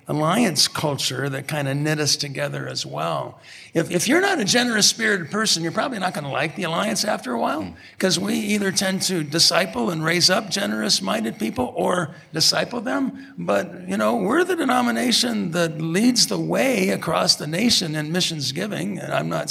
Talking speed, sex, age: 190 wpm, male, 50-69